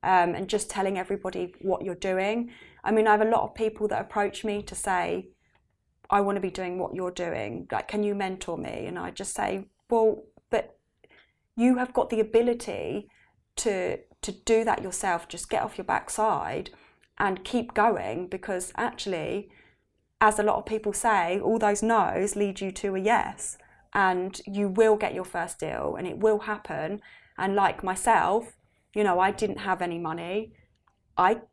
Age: 20-39